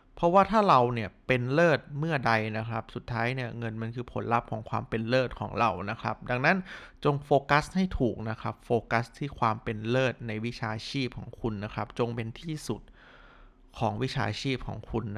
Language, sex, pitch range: Thai, male, 120-170 Hz